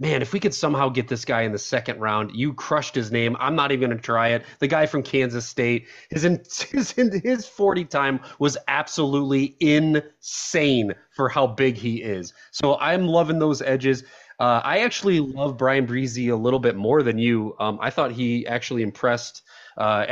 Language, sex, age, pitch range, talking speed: English, male, 30-49, 125-170 Hz, 200 wpm